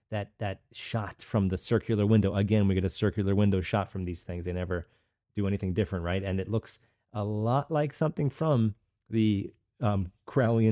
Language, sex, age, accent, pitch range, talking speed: English, male, 30-49, American, 95-115 Hz, 185 wpm